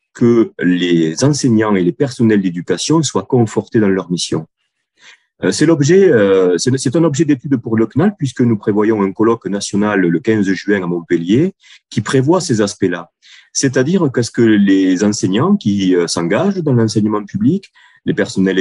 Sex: male